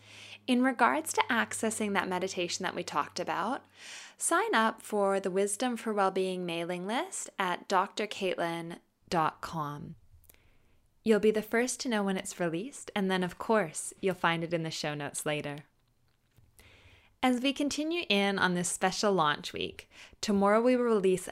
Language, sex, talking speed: English, female, 155 wpm